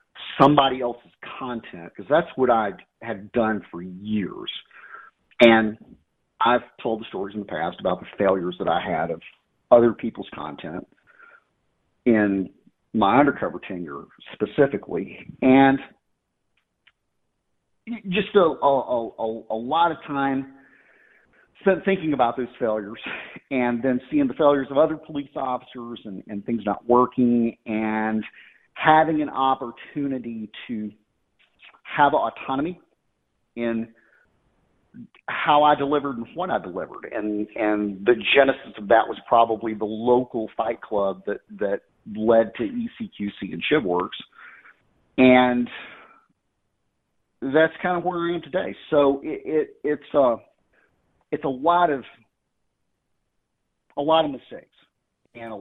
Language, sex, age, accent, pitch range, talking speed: English, male, 50-69, American, 110-145 Hz, 130 wpm